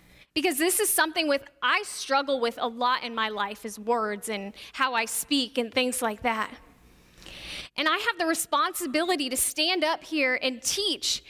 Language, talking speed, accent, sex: English, 180 wpm, American, female